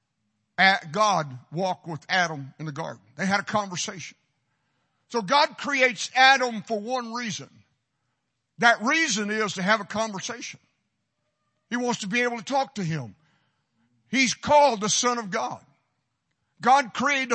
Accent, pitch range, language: American, 165-240 Hz, English